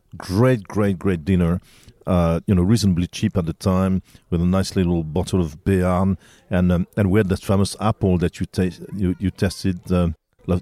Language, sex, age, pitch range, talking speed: English, male, 40-59, 95-110 Hz, 200 wpm